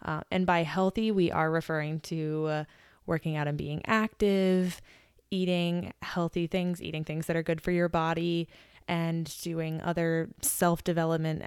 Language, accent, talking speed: English, American, 150 wpm